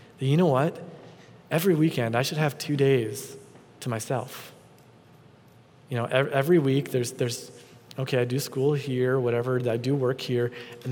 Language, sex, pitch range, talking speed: English, male, 125-150 Hz, 165 wpm